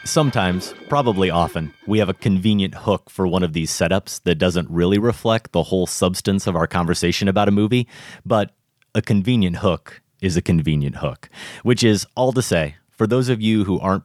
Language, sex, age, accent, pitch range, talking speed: English, male, 30-49, American, 90-120 Hz, 190 wpm